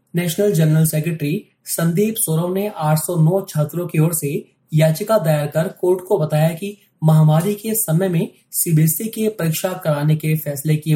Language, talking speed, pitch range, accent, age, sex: Hindi, 165 wpm, 150-190 Hz, native, 20-39, male